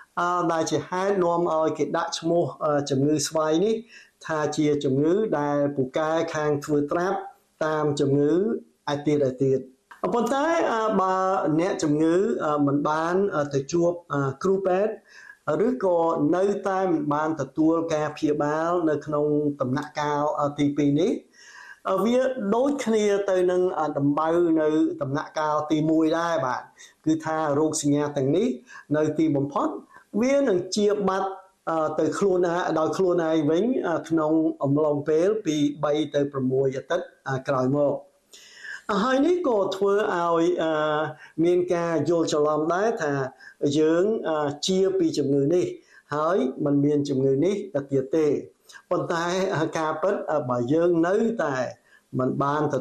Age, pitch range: 60-79, 145-180 Hz